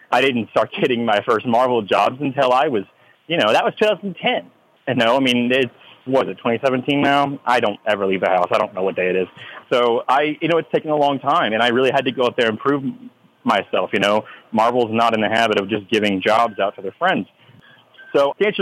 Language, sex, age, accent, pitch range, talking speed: English, male, 30-49, American, 110-140 Hz, 250 wpm